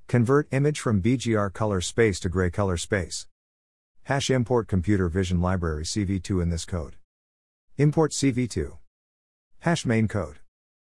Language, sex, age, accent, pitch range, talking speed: English, male, 50-69, American, 85-115 Hz, 135 wpm